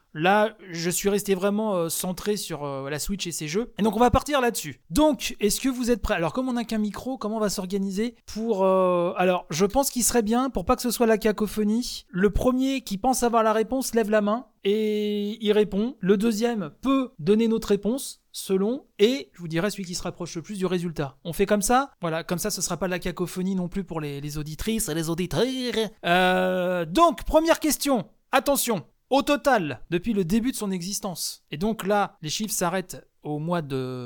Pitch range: 180-240 Hz